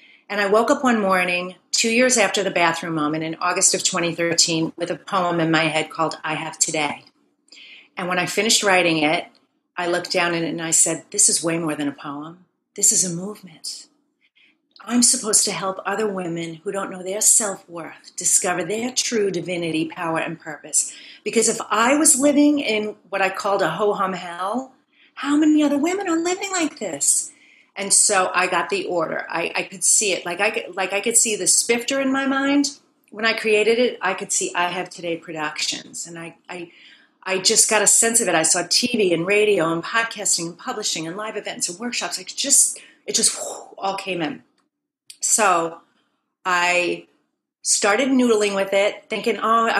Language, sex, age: English, female, 40-59